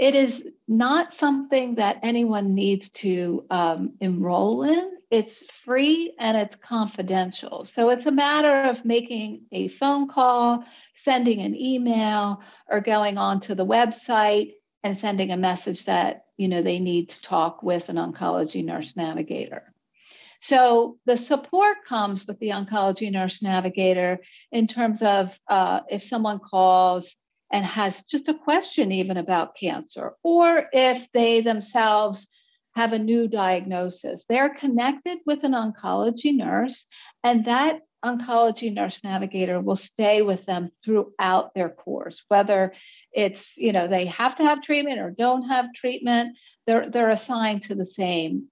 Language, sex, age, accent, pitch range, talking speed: English, female, 50-69, American, 195-260 Hz, 145 wpm